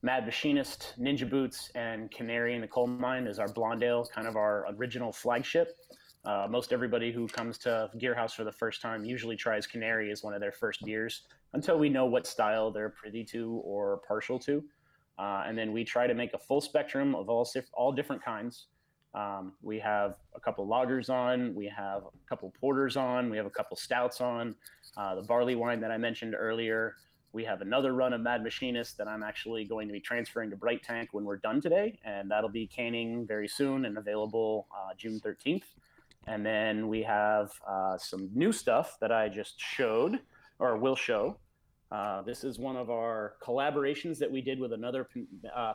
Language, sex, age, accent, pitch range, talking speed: English, male, 30-49, American, 110-125 Hz, 200 wpm